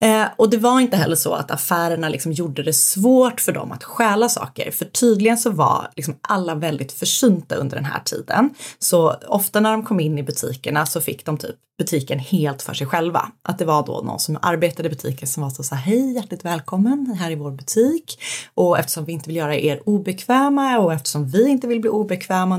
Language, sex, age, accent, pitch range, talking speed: Swedish, female, 30-49, native, 155-215 Hz, 220 wpm